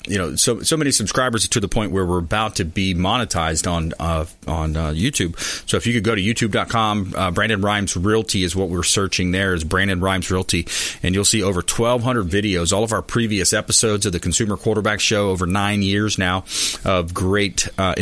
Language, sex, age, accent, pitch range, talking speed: English, male, 30-49, American, 90-110 Hz, 210 wpm